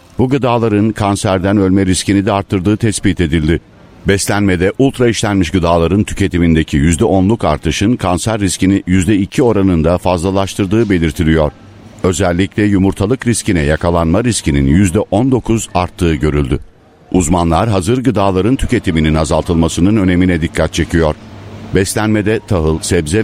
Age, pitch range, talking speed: 60-79, 85-105 Hz, 105 wpm